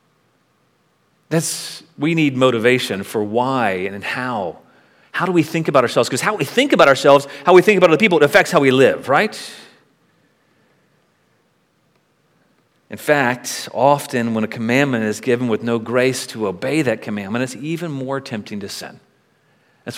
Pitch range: 125-165 Hz